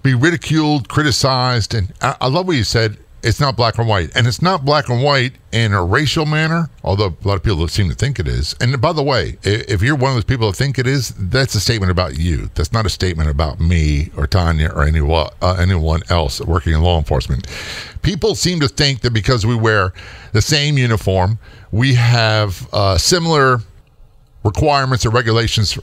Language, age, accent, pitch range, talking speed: English, 50-69, American, 95-130 Hz, 205 wpm